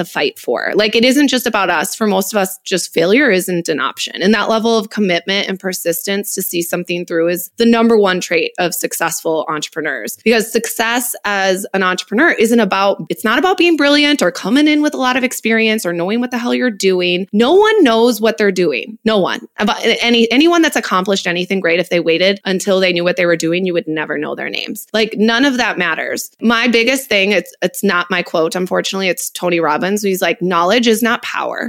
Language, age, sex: English, 20-39, female